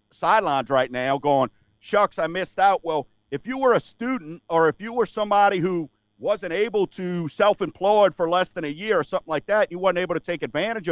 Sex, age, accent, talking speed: male, 50-69, American, 215 wpm